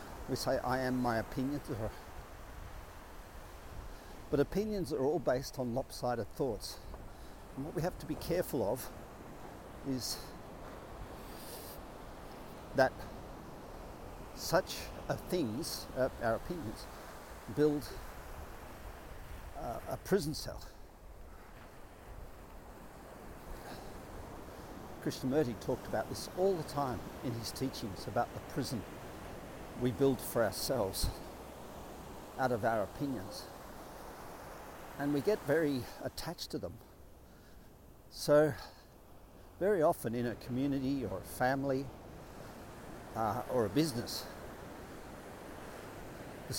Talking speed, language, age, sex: 95 wpm, English, 60-79, male